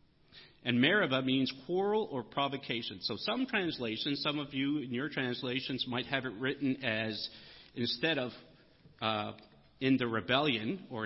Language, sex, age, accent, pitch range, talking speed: English, male, 40-59, American, 120-160 Hz, 145 wpm